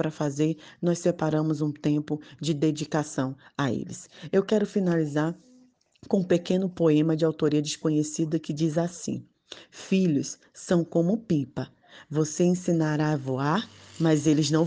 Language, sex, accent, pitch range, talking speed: Portuguese, female, Brazilian, 145-180 Hz, 140 wpm